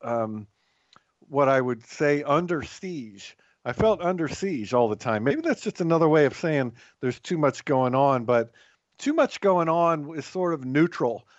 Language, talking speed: English, 185 wpm